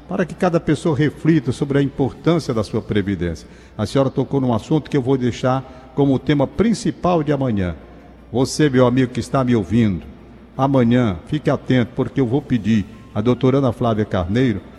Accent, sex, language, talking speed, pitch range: Brazilian, male, Portuguese, 180 wpm, 130-195 Hz